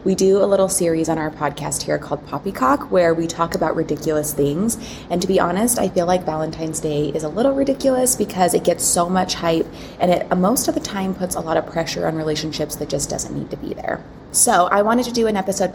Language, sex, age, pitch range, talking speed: English, female, 20-39, 155-190 Hz, 240 wpm